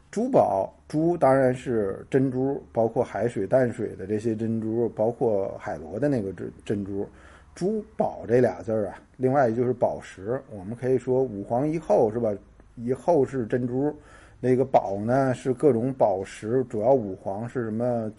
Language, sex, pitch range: Chinese, male, 105-130 Hz